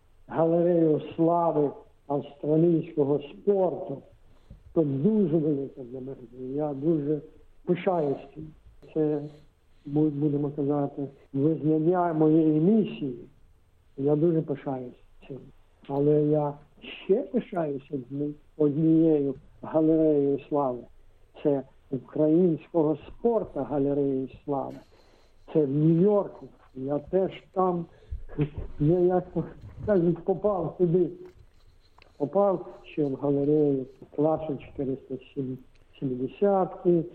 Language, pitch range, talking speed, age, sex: Ukrainian, 135-160 Hz, 85 wpm, 60-79, male